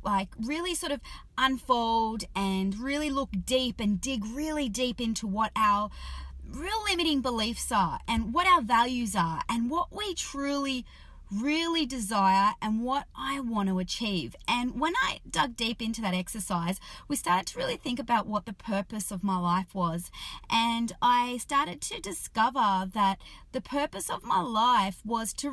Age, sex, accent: 30-49, female, Australian